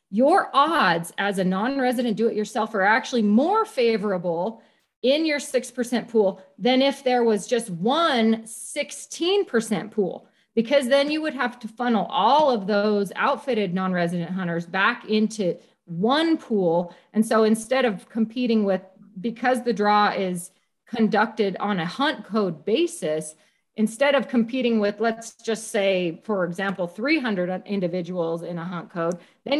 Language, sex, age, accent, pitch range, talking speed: English, female, 40-59, American, 190-250 Hz, 145 wpm